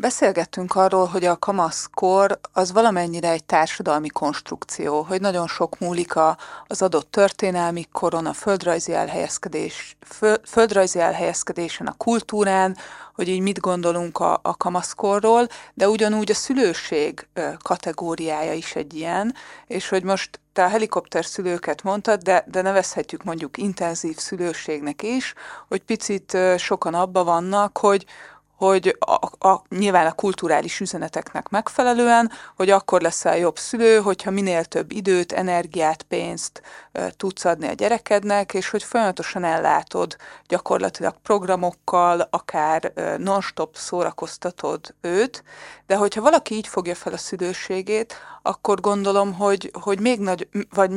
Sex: female